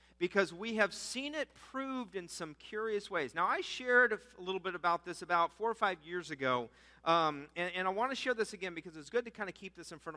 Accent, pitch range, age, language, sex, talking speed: American, 155-220 Hz, 40-59, English, male, 260 wpm